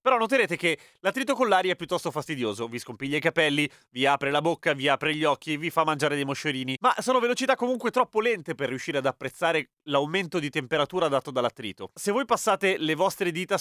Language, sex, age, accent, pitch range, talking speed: Italian, male, 30-49, native, 150-210 Hz, 205 wpm